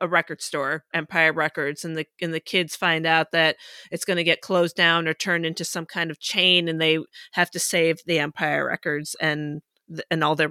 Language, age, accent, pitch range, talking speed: English, 30-49, American, 165-200 Hz, 215 wpm